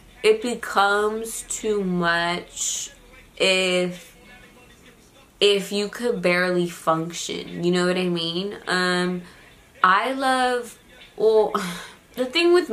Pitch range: 165-205 Hz